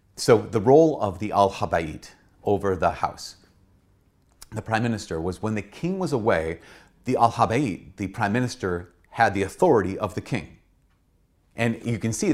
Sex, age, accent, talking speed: male, 30-49, American, 170 wpm